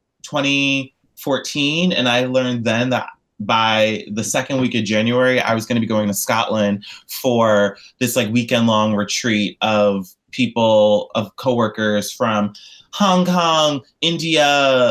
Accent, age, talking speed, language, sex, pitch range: American, 20-39, 135 wpm, English, male, 105-130 Hz